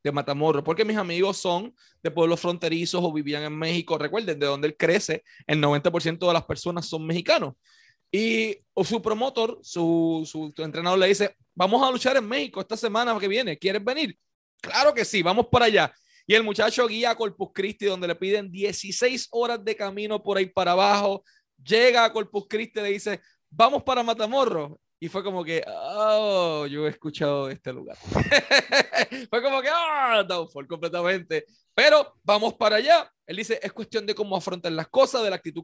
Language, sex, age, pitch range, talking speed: Spanish, male, 30-49, 170-225 Hz, 190 wpm